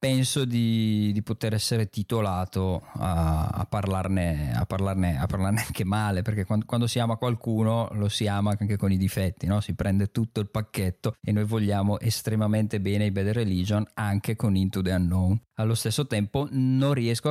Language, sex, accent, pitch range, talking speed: Italian, male, native, 105-125 Hz, 180 wpm